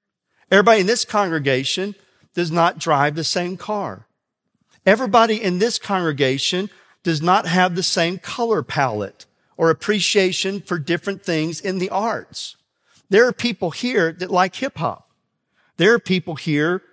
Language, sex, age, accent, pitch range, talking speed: English, male, 50-69, American, 160-215 Hz, 145 wpm